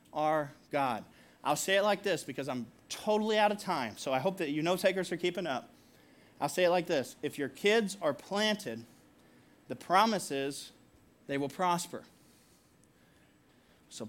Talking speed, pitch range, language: 170 wpm, 150-205 Hz, English